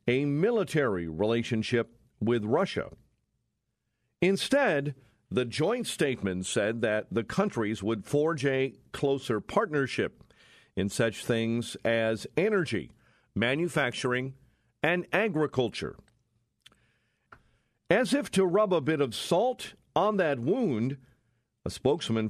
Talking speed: 105 wpm